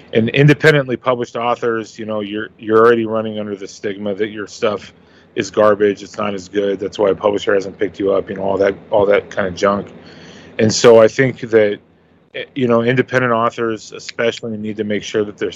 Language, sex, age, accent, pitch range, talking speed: English, male, 30-49, American, 100-115 Hz, 210 wpm